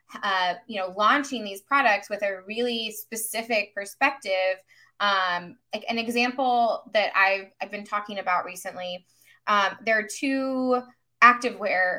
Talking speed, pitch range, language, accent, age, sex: 135 wpm, 185-240 Hz, English, American, 20-39, female